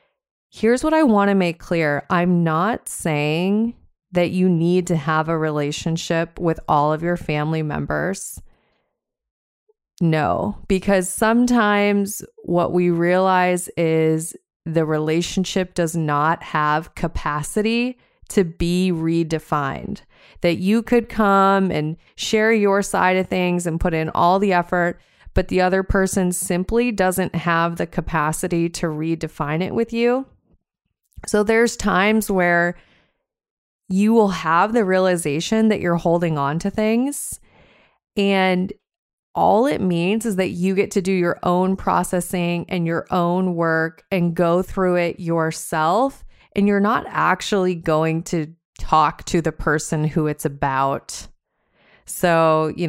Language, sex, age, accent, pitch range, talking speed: English, female, 30-49, American, 160-195 Hz, 135 wpm